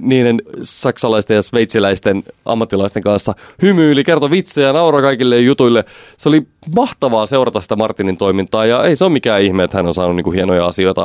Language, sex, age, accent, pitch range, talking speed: Finnish, male, 30-49, native, 90-115 Hz, 175 wpm